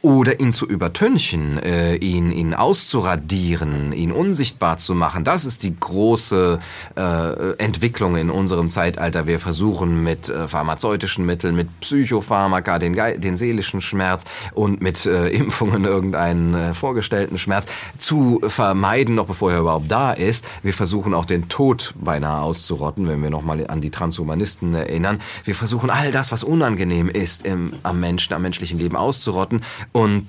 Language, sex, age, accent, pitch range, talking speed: German, male, 30-49, German, 85-105 Hz, 155 wpm